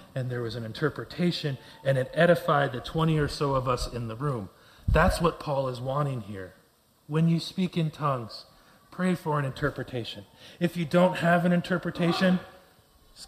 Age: 30-49